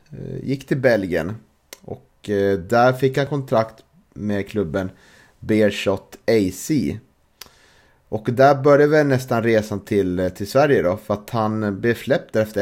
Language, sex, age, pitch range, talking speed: Swedish, male, 30-49, 95-130 Hz, 135 wpm